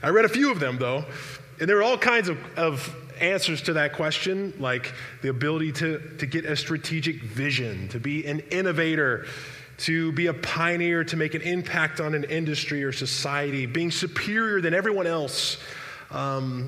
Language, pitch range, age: English, 135-170 Hz, 20-39